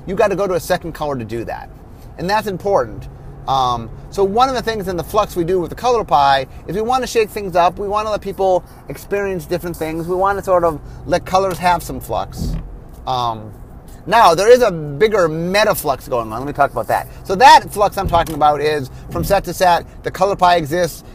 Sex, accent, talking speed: male, American, 235 wpm